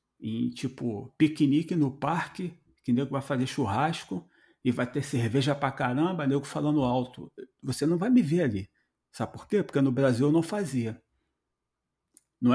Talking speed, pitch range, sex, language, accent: 165 wpm, 120-170 Hz, male, Portuguese, Brazilian